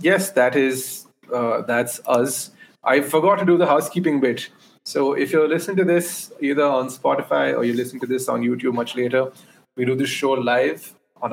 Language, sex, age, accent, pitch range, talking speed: English, male, 30-49, Indian, 115-155 Hz, 195 wpm